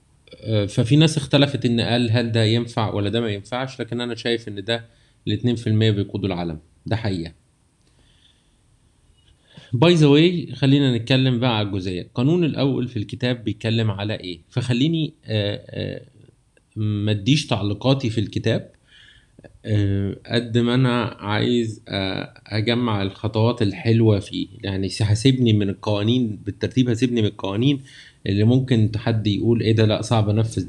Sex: male